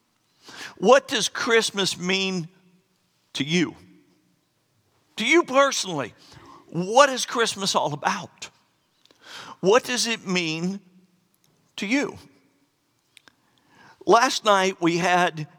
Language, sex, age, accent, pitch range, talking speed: English, male, 50-69, American, 150-195 Hz, 90 wpm